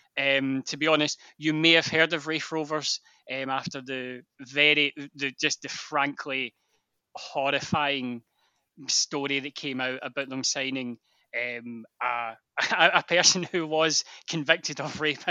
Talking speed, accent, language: 140 wpm, British, English